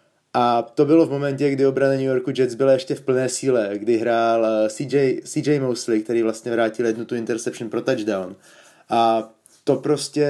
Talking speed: 185 wpm